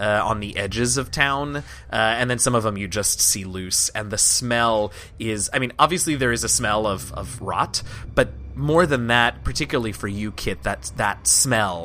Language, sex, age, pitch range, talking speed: English, male, 20-39, 105-150 Hz, 210 wpm